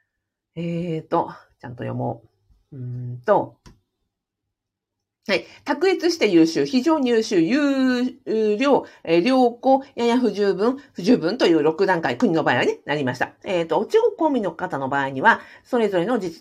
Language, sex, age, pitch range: Japanese, female, 50-69, 155-260 Hz